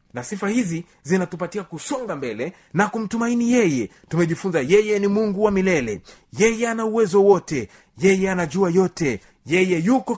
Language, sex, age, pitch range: Swahili, male, 30-49, 130-185 Hz